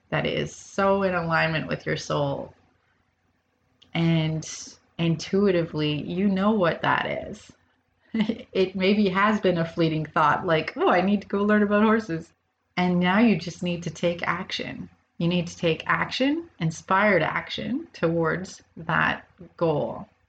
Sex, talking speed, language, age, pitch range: female, 145 wpm, English, 30-49, 165-215 Hz